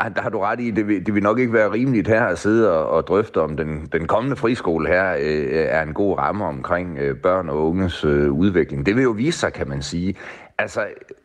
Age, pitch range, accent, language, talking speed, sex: 30-49, 75-105 Hz, native, Danish, 245 wpm, male